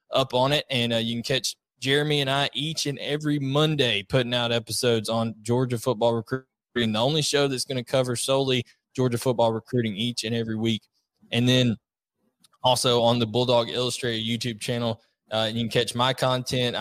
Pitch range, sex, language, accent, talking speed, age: 115-135 Hz, male, English, American, 185 wpm, 20-39